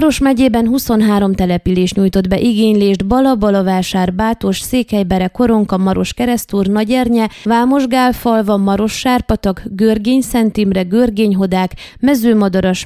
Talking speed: 105 wpm